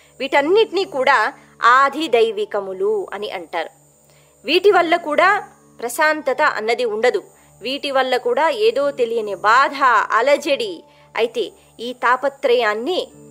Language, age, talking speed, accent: Telugu, 20-39, 100 wpm, native